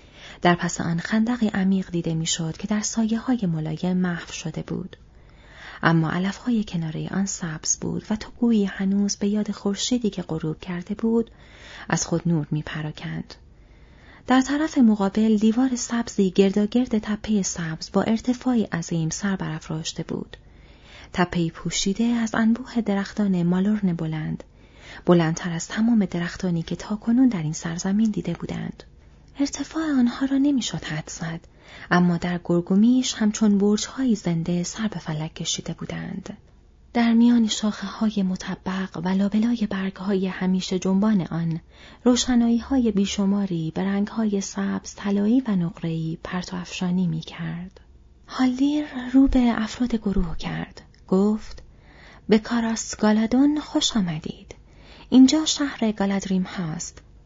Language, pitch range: Persian, 175-225 Hz